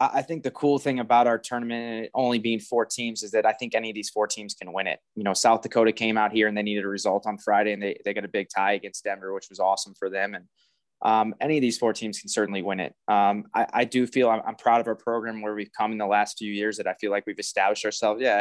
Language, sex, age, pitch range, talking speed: English, male, 20-39, 105-120 Hz, 295 wpm